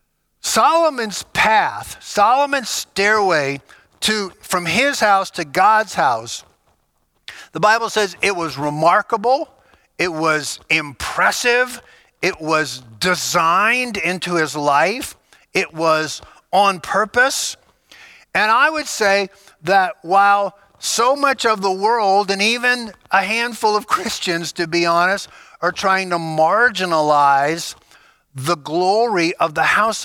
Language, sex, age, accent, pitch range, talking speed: English, male, 50-69, American, 165-215 Hz, 120 wpm